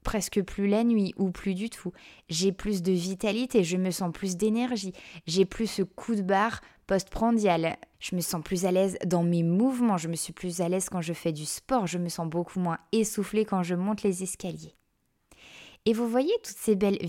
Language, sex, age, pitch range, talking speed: French, female, 20-39, 185-230 Hz, 215 wpm